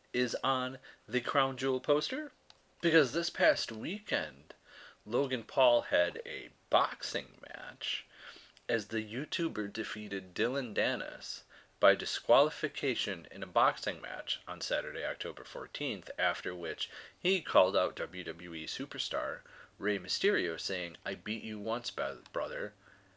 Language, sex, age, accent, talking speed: English, male, 30-49, American, 120 wpm